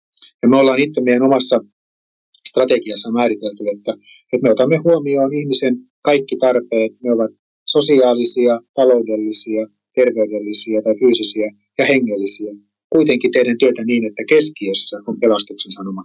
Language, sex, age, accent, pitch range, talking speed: Finnish, male, 30-49, native, 110-145 Hz, 125 wpm